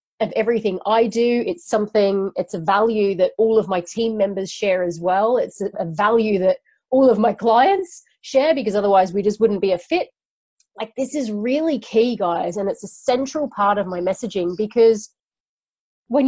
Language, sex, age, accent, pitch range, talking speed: English, female, 30-49, Australian, 190-265 Hz, 190 wpm